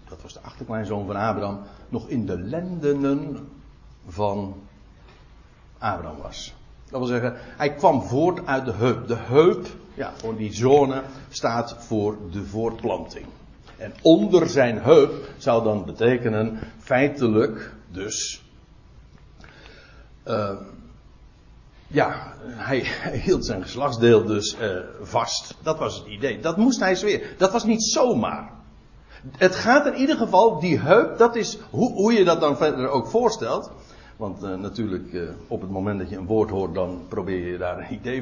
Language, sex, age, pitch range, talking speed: Dutch, male, 60-79, 110-175 Hz, 155 wpm